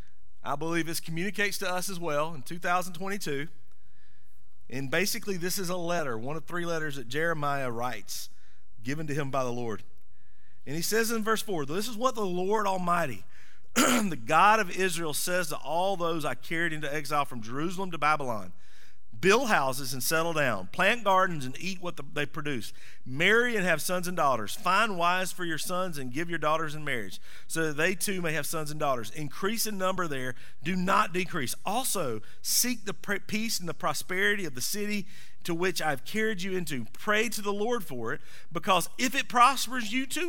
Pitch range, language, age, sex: 145-205 Hz, English, 40-59, male